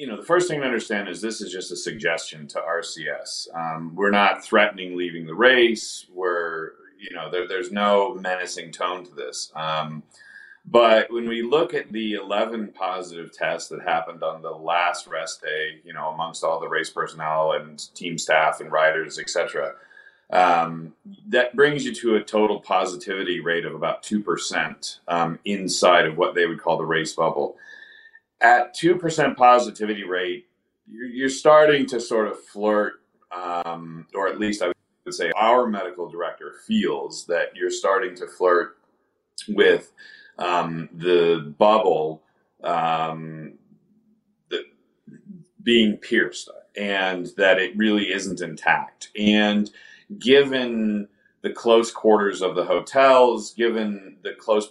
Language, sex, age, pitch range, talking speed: English, male, 40-59, 85-130 Hz, 150 wpm